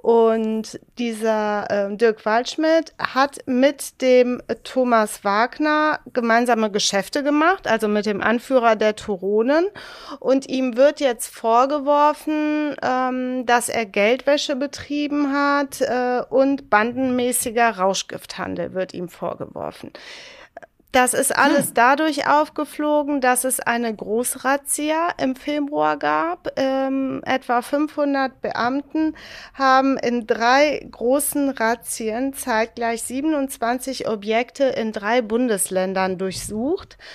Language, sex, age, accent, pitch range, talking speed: German, female, 30-49, German, 225-280 Hz, 105 wpm